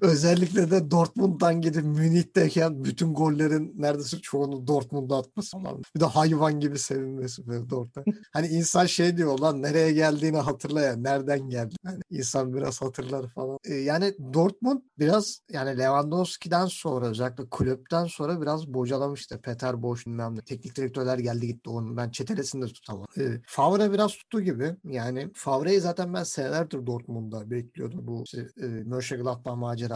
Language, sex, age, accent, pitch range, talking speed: Turkish, male, 50-69, native, 125-160 Hz, 150 wpm